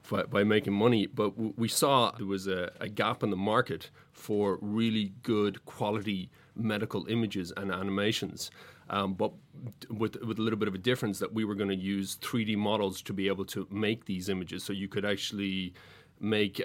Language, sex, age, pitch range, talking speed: English, male, 30-49, 100-110 Hz, 200 wpm